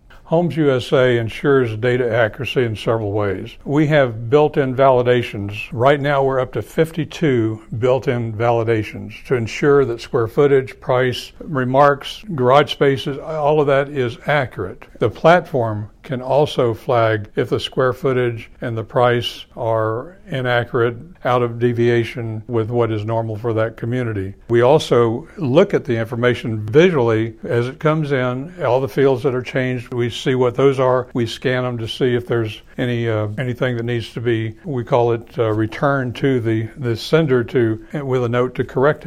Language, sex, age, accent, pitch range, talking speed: English, male, 60-79, American, 115-140 Hz, 165 wpm